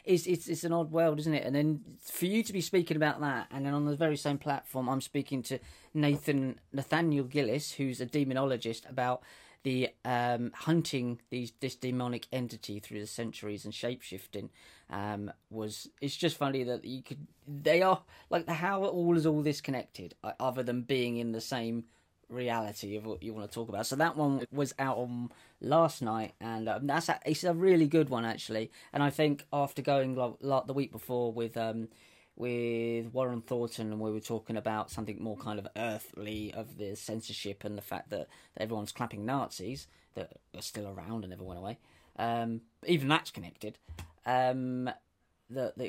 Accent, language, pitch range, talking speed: British, English, 110-145 Hz, 190 wpm